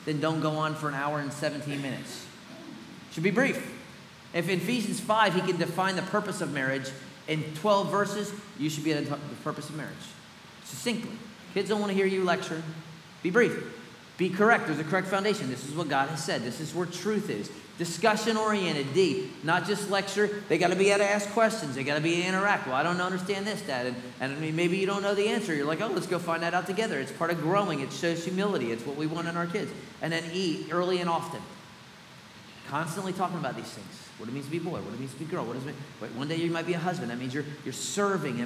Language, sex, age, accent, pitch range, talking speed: English, male, 40-59, American, 155-190 Hz, 250 wpm